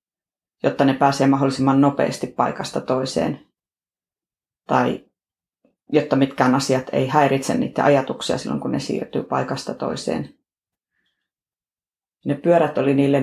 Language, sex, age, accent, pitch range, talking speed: Finnish, female, 30-49, native, 135-150 Hz, 115 wpm